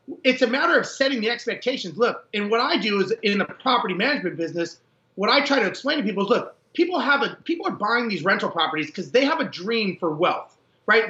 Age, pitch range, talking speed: 30-49, 200-270 Hz, 240 wpm